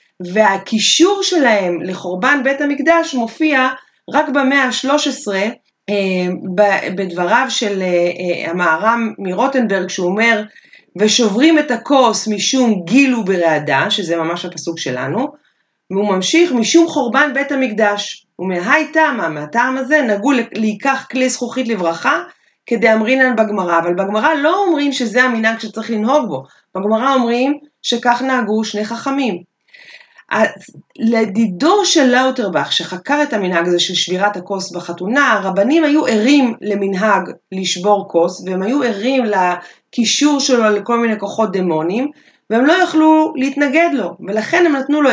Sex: female